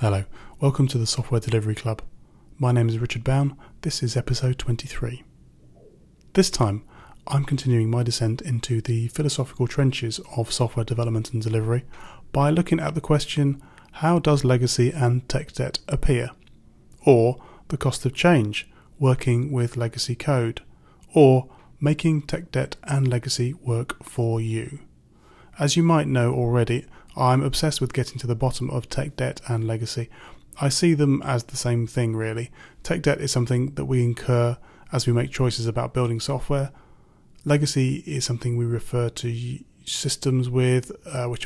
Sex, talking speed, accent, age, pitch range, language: male, 160 wpm, British, 30-49, 120-140 Hz, English